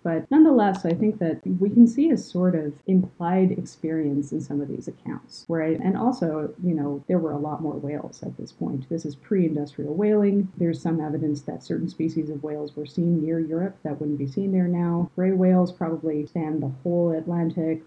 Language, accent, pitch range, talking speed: English, American, 150-190 Hz, 205 wpm